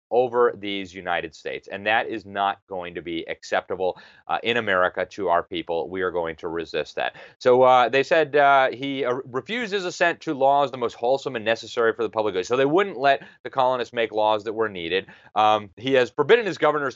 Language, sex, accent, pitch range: English, male, American, 115-150 Hz